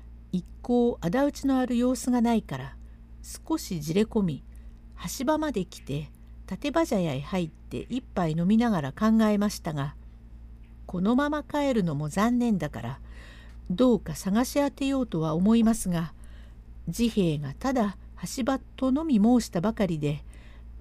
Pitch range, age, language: 145-240 Hz, 50-69, Japanese